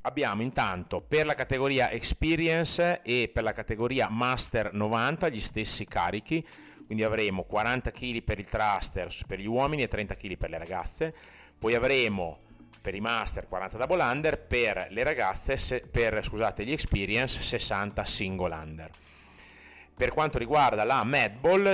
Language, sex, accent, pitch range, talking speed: Italian, male, native, 90-125 Hz, 150 wpm